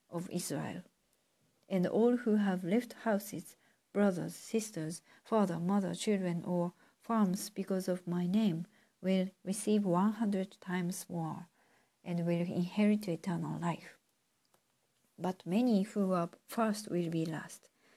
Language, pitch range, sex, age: Japanese, 175-210 Hz, female, 50-69